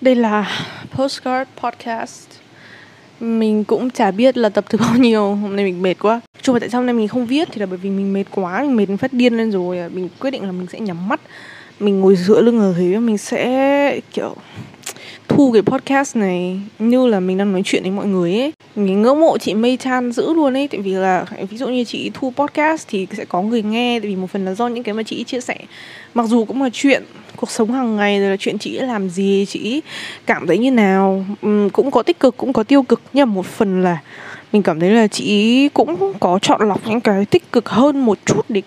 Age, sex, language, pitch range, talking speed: 20-39, female, Vietnamese, 205-275 Hz, 250 wpm